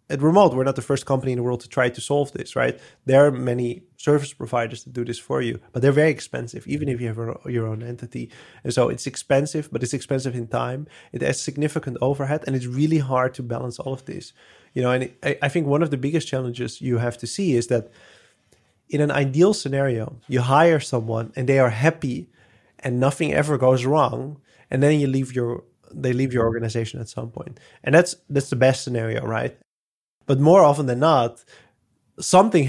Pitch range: 120-145 Hz